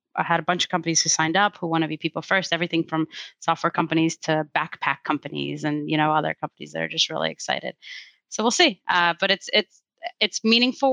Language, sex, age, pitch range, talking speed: English, female, 20-39, 160-185 Hz, 225 wpm